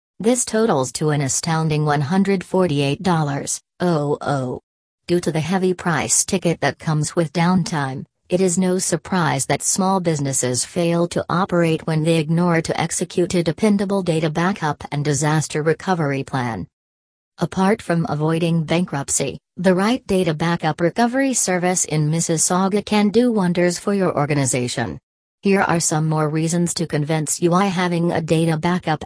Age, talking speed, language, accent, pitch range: 40-59, 145 wpm, English, American, 145-180 Hz